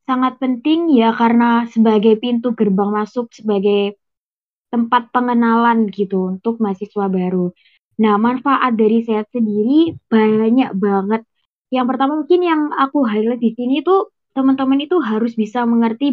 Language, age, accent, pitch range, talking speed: Indonesian, 20-39, native, 210-255 Hz, 135 wpm